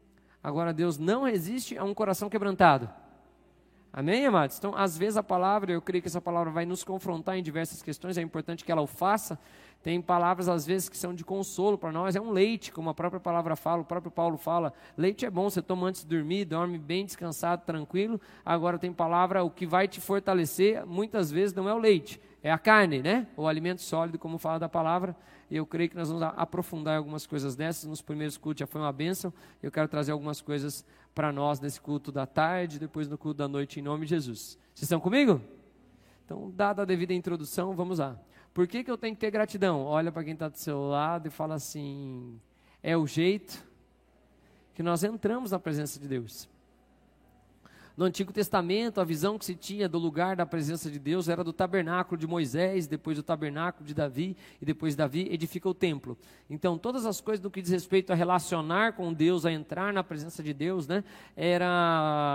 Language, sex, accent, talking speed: Portuguese, male, Brazilian, 210 wpm